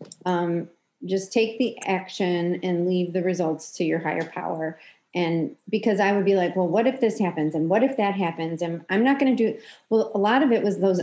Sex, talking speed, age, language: female, 230 wpm, 30-49, English